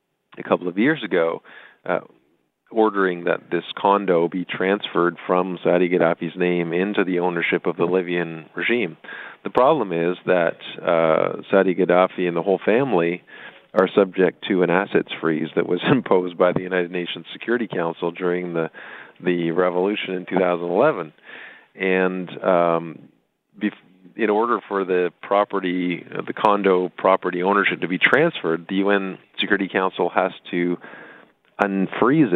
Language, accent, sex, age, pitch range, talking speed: English, American, male, 40-59, 85-95 Hz, 145 wpm